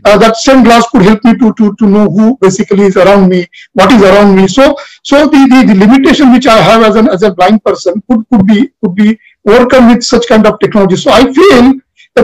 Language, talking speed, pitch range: English, 245 wpm, 195-235 Hz